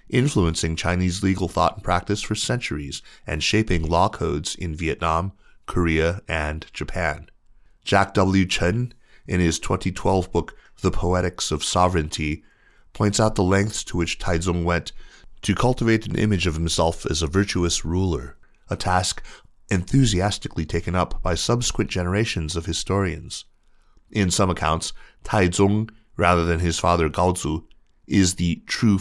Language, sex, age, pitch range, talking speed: English, male, 30-49, 85-100 Hz, 140 wpm